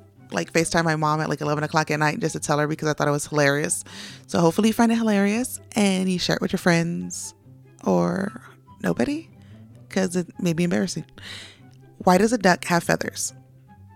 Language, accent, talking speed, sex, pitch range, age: English, American, 200 wpm, female, 150-185 Hz, 20-39